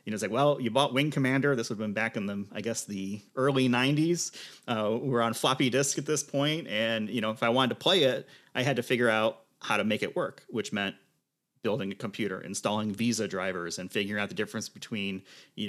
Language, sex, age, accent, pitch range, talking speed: English, male, 30-49, American, 105-135 Hz, 240 wpm